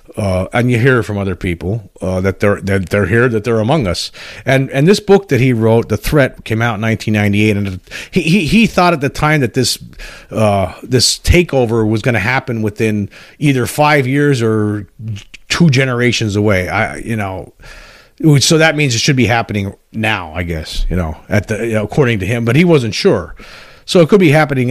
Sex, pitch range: male, 105-125 Hz